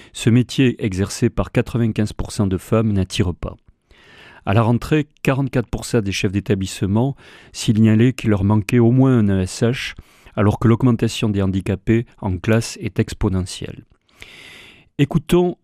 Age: 40-59